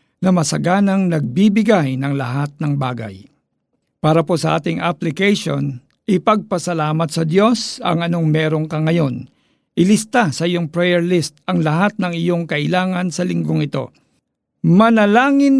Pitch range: 155-200 Hz